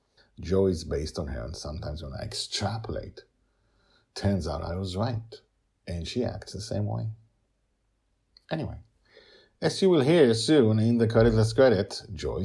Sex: male